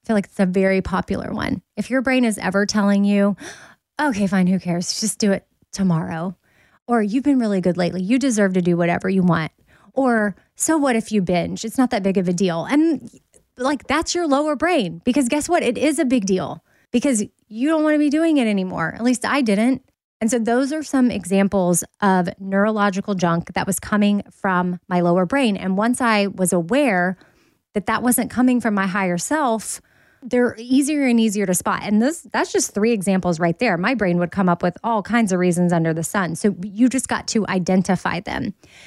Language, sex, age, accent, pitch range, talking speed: English, female, 20-39, American, 190-245 Hz, 215 wpm